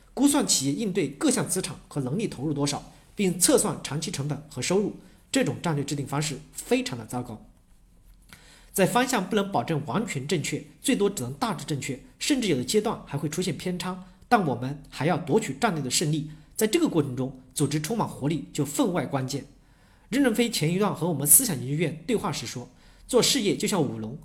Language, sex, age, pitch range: Chinese, male, 40-59, 145-205 Hz